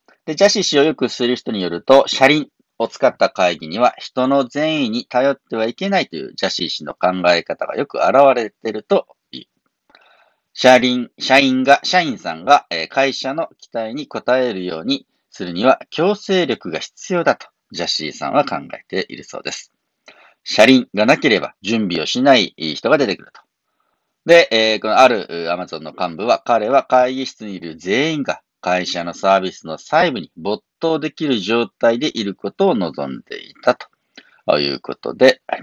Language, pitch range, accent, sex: Japanese, 105-145 Hz, native, male